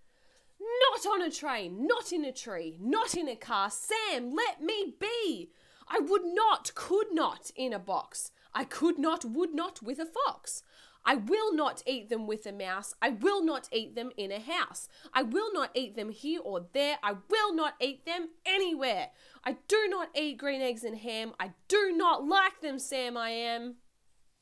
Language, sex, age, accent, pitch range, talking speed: English, female, 20-39, Australian, 240-370 Hz, 190 wpm